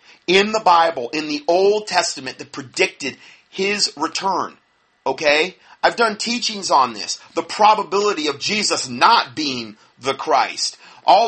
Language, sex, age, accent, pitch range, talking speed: English, male, 40-59, American, 150-210 Hz, 140 wpm